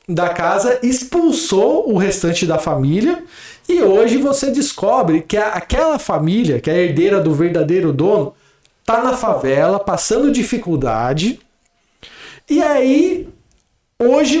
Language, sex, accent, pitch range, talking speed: Portuguese, male, Brazilian, 170-255 Hz, 115 wpm